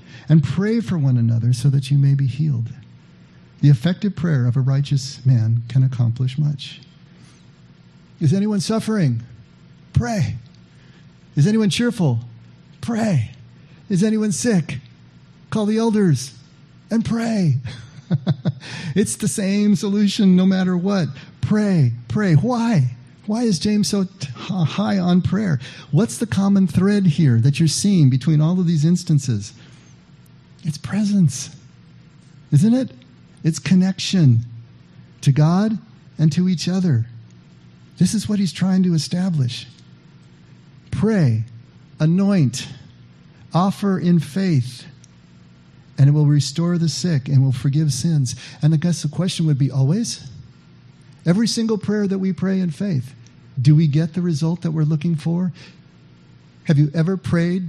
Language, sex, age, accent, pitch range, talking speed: English, male, 40-59, American, 130-185 Hz, 135 wpm